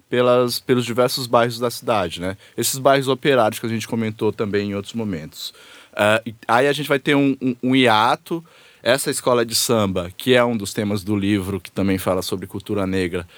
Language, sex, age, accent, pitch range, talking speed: Portuguese, male, 20-39, Brazilian, 105-130 Hz, 200 wpm